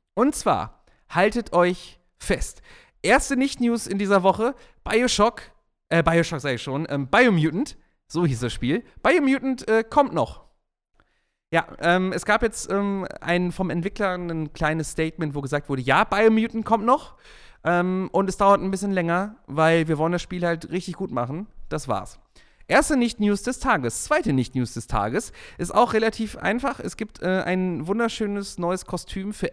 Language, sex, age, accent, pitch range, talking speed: German, male, 30-49, German, 165-225 Hz, 165 wpm